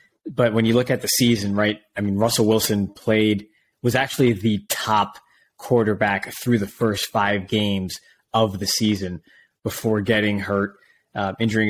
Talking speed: 160 wpm